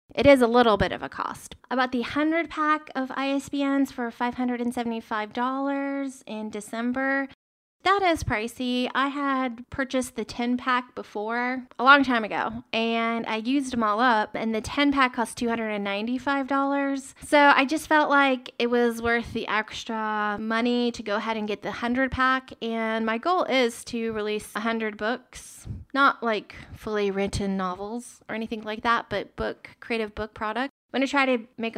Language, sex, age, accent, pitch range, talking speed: English, female, 20-39, American, 220-270 Hz, 175 wpm